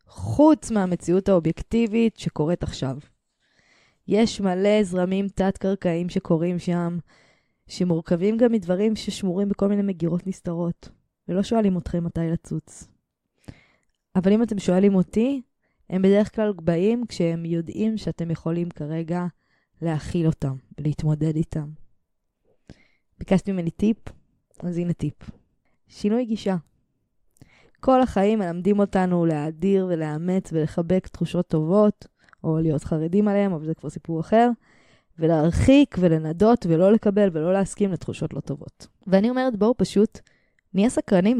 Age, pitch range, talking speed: 20-39, 165-205 Hz, 120 wpm